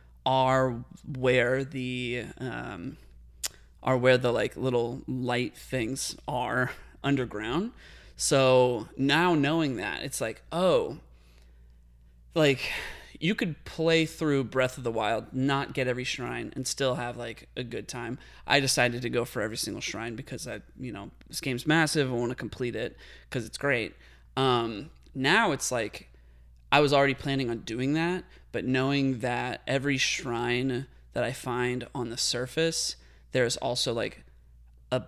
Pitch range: 115-140 Hz